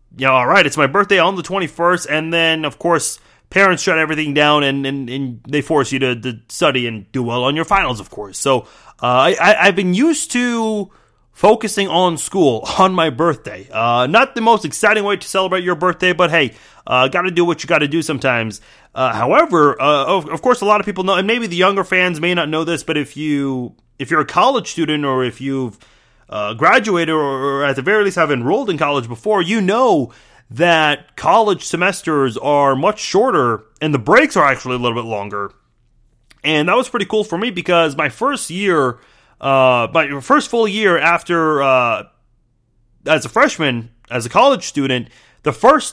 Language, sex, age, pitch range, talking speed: English, male, 30-49, 135-190 Hz, 205 wpm